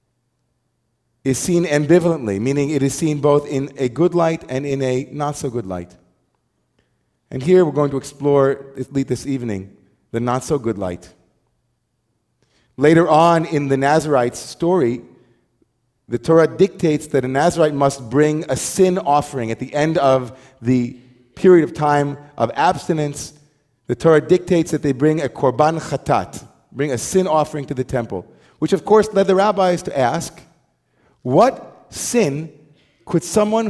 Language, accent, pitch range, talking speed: English, American, 125-160 Hz, 150 wpm